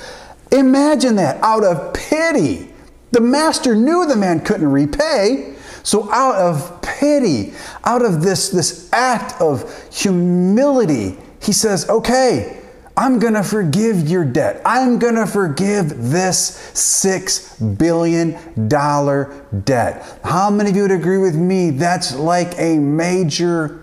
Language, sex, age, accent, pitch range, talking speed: English, male, 30-49, American, 165-240 Hz, 125 wpm